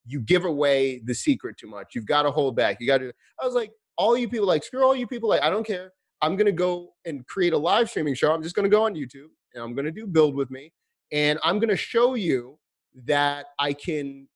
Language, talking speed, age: English, 270 wpm, 30-49